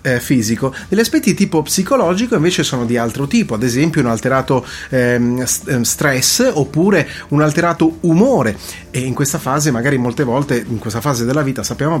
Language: Italian